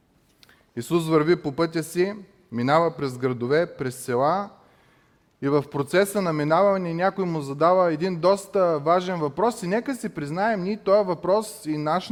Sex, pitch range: male, 145-195 Hz